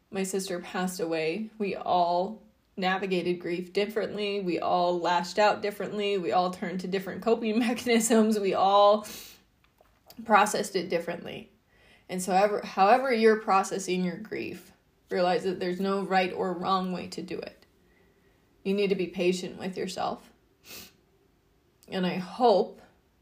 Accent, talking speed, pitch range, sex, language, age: American, 140 wpm, 175-195 Hz, female, English, 20-39